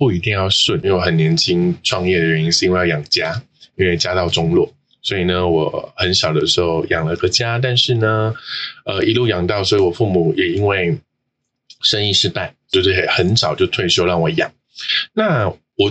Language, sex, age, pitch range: Chinese, male, 20-39, 95-130 Hz